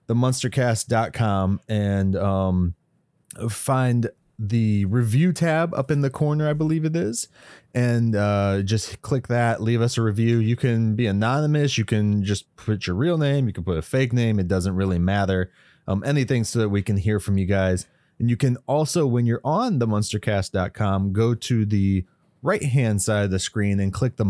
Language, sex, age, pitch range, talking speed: English, male, 30-49, 105-130 Hz, 185 wpm